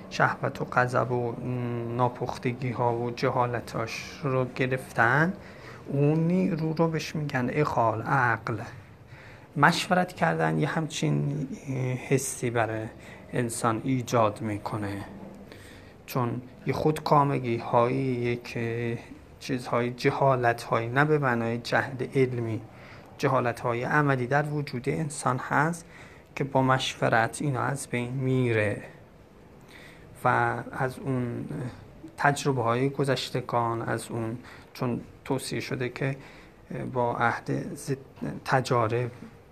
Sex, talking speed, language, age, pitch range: male, 100 wpm, Persian, 30-49, 120-140 Hz